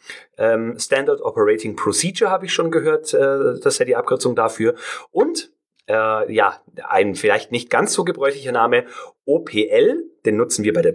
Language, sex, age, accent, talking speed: German, male, 30-49, German, 160 wpm